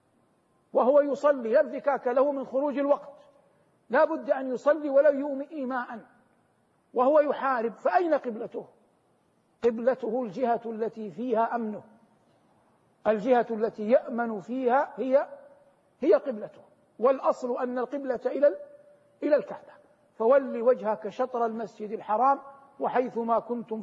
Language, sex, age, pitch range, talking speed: Arabic, male, 50-69, 235-290 Hz, 110 wpm